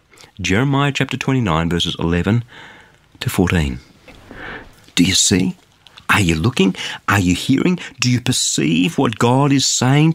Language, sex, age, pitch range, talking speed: English, male, 50-69, 95-140 Hz, 135 wpm